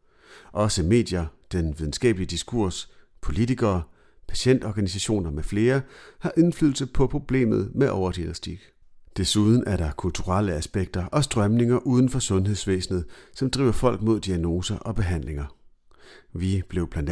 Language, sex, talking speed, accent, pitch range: Danish, male, 125 wpm, native, 90-125 Hz